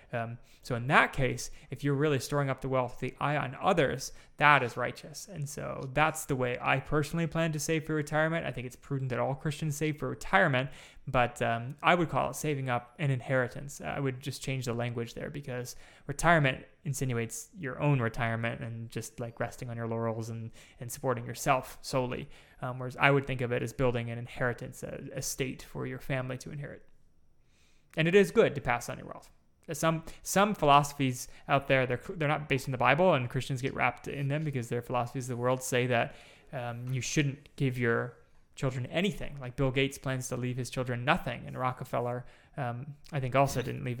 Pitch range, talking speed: 120-145 Hz, 210 wpm